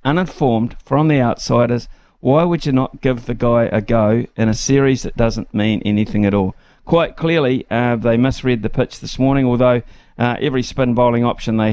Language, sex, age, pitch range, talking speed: English, male, 50-69, 110-125 Hz, 195 wpm